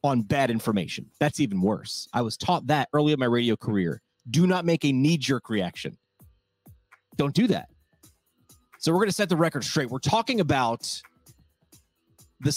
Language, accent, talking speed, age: English, American, 170 wpm, 30-49